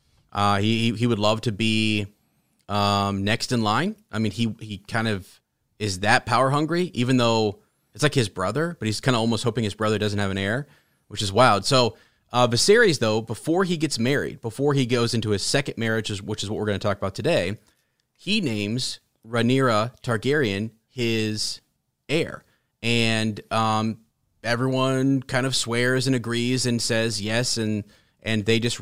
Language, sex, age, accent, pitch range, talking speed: English, male, 30-49, American, 105-130 Hz, 180 wpm